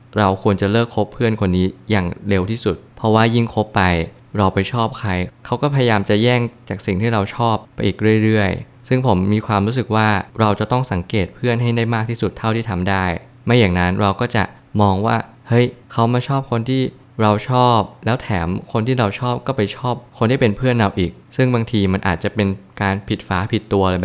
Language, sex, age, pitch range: Thai, male, 20-39, 95-120 Hz